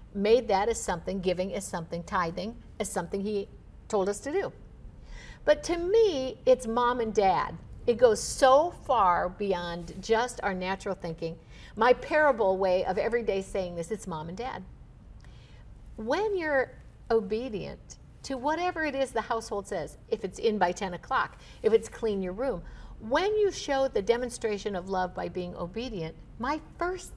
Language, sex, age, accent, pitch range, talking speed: English, female, 60-79, American, 190-260 Hz, 170 wpm